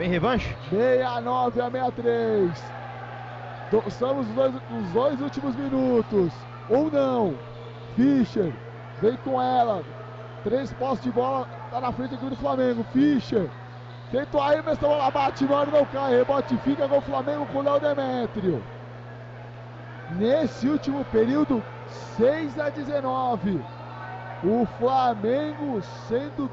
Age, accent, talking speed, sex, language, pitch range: 20-39, Brazilian, 125 wpm, male, Portuguese, 220-270 Hz